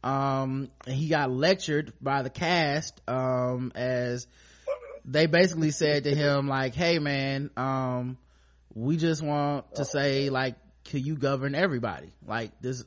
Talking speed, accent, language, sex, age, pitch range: 140 wpm, American, English, male, 20-39, 125-155 Hz